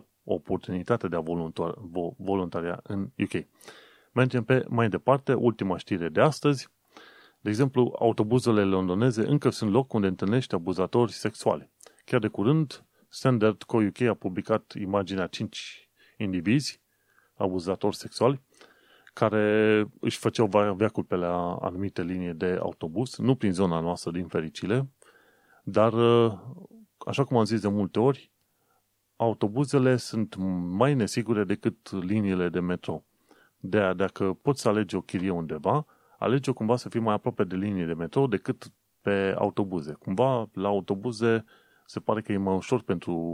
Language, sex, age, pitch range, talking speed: Romanian, male, 30-49, 95-120 Hz, 145 wpm